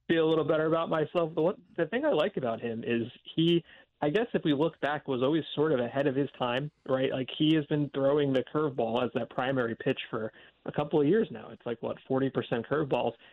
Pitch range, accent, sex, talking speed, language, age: 130-155 Hz, American, male, 240 wpm, English, 30-49